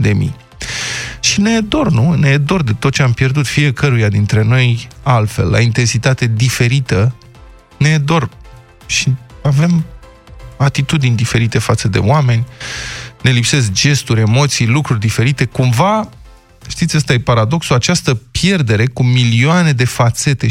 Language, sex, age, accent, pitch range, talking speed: Romanian, male, 20-39, native, 120-150 Hz, 130 wpm